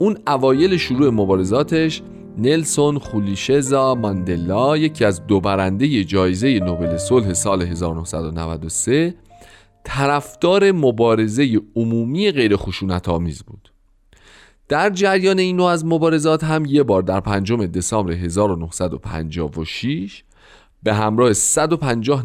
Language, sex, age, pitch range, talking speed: Persian, male, 40-59, 95-150 Hz, 100 wpm